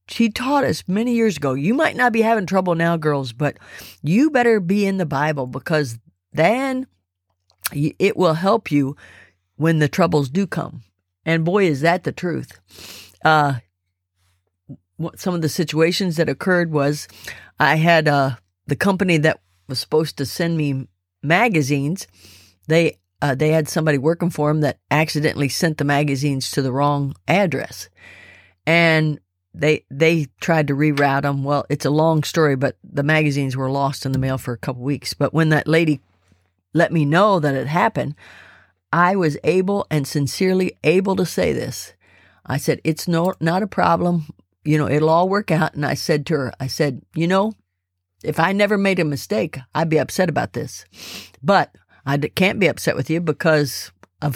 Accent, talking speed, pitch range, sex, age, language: American, 180 wpm, 135-170 Hz, female, 50-69, English